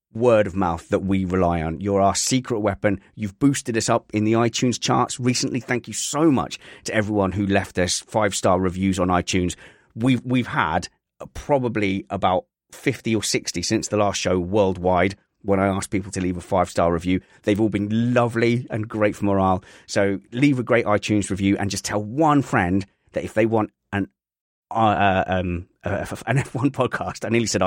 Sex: male